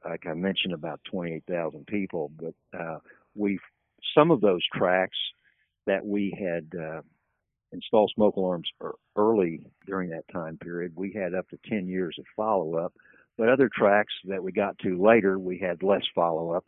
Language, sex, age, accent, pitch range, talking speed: English, male, 60-79, American, 85-105 Hz, 170 wpm